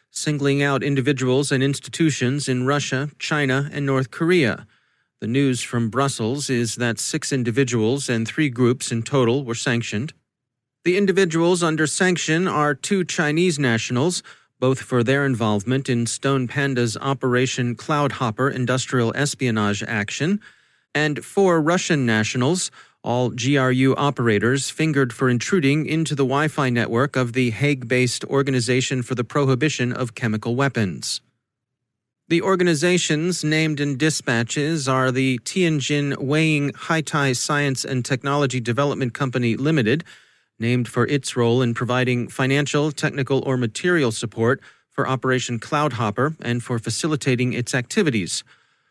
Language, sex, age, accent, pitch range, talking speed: English, male, 40-59, American, 125-150 Hz, 130 wpm